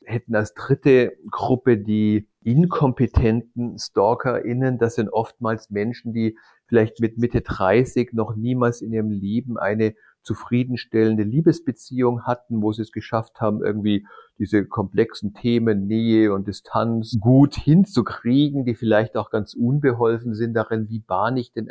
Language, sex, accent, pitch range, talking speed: German, male, German, 110-125 Hz, 140 wpm